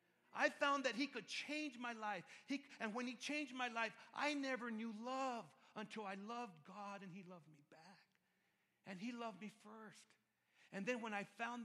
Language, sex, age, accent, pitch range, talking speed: English, male, 40-59, American, 160-210 Hz, 190 wpm